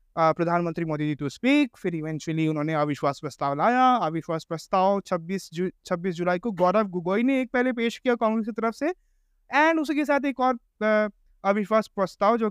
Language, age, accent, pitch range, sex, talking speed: Hindi, 20-39, native, 175-245 Hz, male, 175 wpm